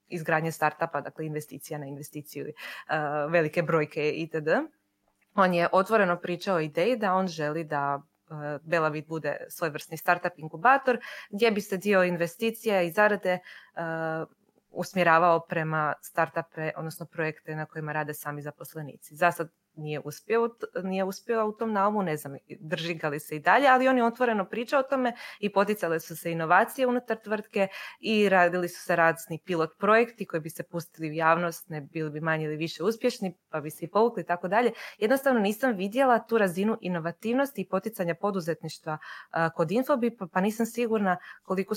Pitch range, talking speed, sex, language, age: 160-205 Hz, 160 wpm, female, Croatian, 20-39